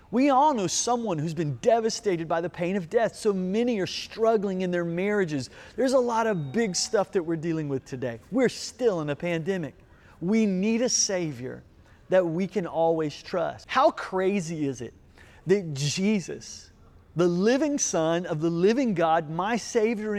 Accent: American